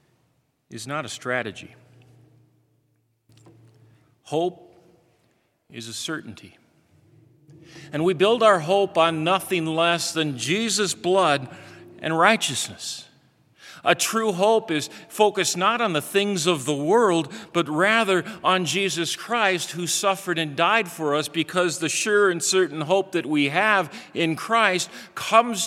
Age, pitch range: 50-69, 130-185 Hz